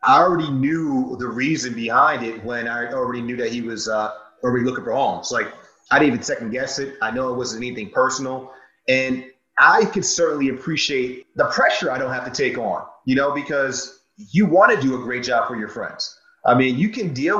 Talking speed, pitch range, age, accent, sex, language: 215 wpm, 125-165 Hz, 30-49, American, male, English